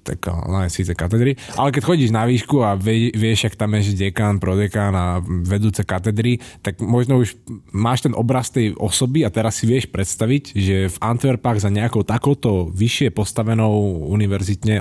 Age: 20-39